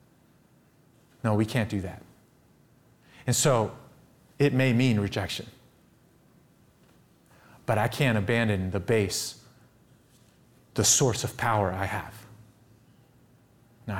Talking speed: 105 wpm